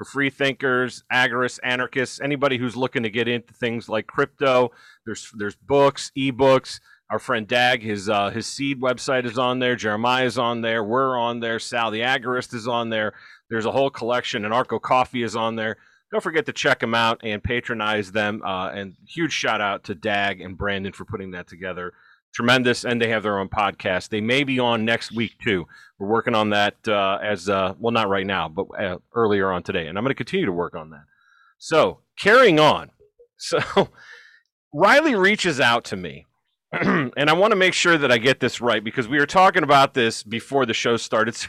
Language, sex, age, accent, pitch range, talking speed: English, male, 40-59, American, 110-140 Hz, 210 wpm